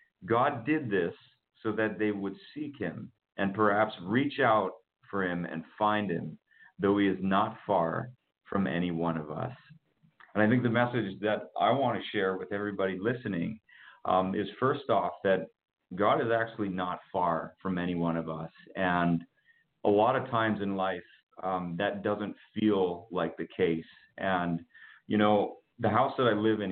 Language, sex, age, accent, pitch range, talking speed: English, male, 40-59, American, 95-110 Hz, 175 wpm